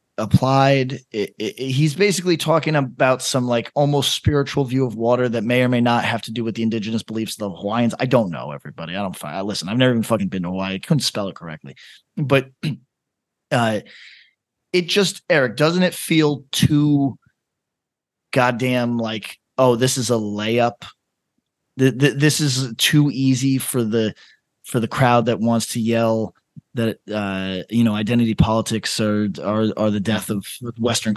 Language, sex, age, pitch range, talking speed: English, male, 30-49, 110-135 Hz, 180 wpm